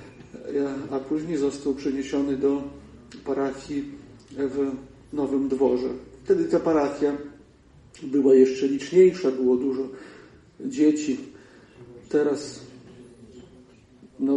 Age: 40-59